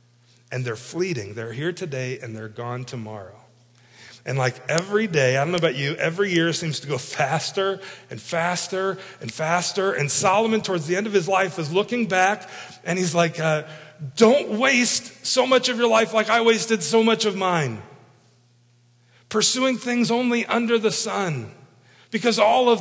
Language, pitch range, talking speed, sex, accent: English, 145-220 Hz, 175 wpm, male, American